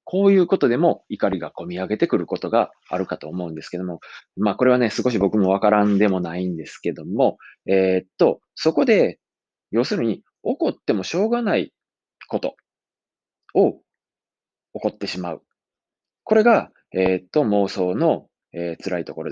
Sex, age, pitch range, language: male, 20-39, 95-140 Hz, Japanese